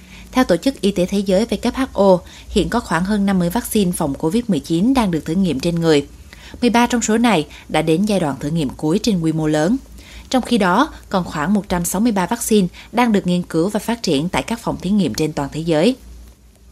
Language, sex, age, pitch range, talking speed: Vietnamese, female, 20-39, 160-225 Hz, 215 wpm